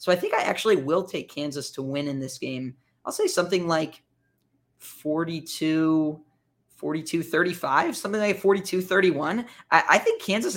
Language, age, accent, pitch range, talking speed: English, 20-39, American, 140-175 Hz, 160 wpm